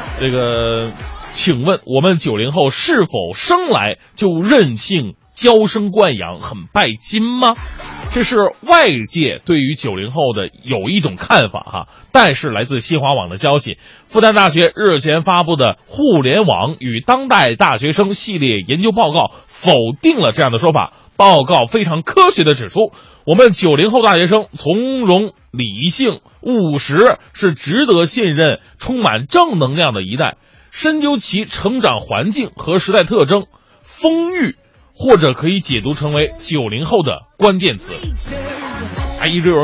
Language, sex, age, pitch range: Chinese, male, 20-39, 135-205 Hz